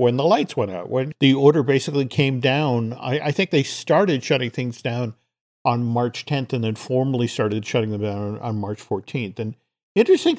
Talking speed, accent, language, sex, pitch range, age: 210 wpm, American, English, male, 120-160 Hz, 50-69